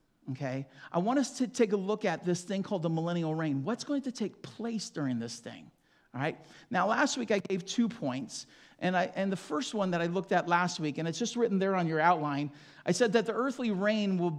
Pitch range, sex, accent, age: 170-225 Hz, male, American, 40-59